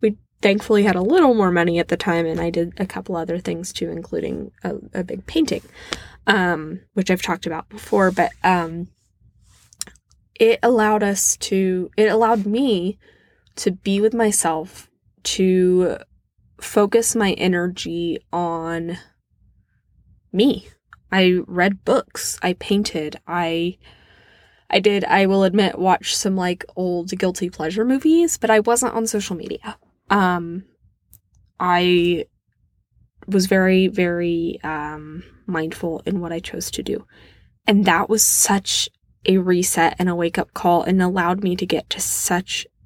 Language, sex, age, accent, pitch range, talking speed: English, female, 10-29, American, 170-215 Hz, 145 wpm